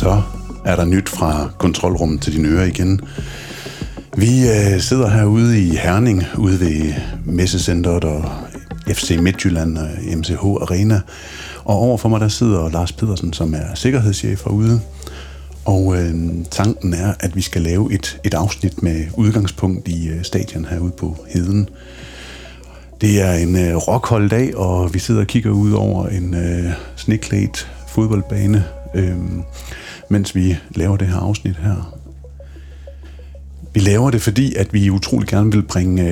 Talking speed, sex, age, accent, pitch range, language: 150 wpm, male, 60-79, native, 80-105 Hz, Danish